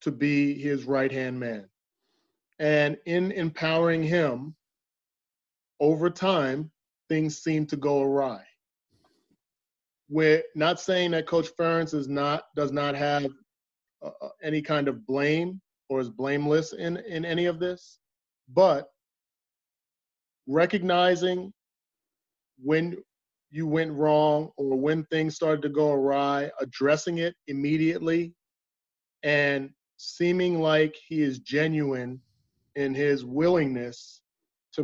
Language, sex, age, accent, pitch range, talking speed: English, male, 30-49, American, 140-160 Hz, 115 wpm